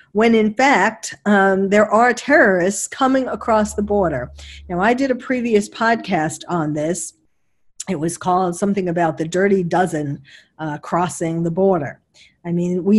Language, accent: English, American